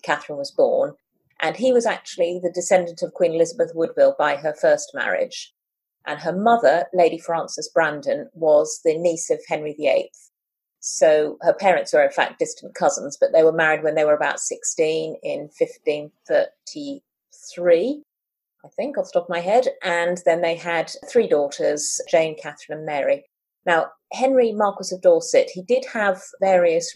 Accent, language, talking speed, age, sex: British, English, 165 wpm, 30-49, female